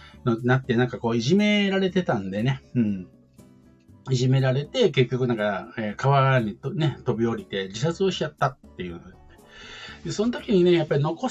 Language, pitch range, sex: Japanese, 110-180 Hz, male